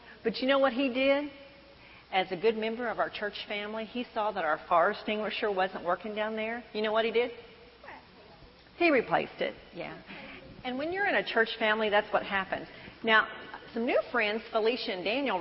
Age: 40-59